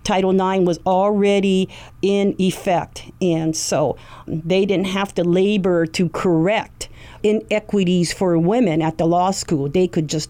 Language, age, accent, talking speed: English, 50-69, American, 145 wpm